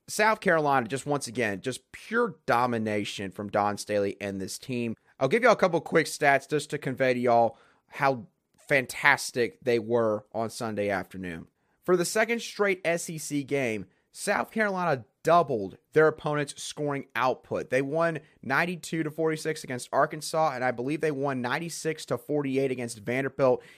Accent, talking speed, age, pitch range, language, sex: American, 155 wpm, 30-49, 120-165 Hz, English, male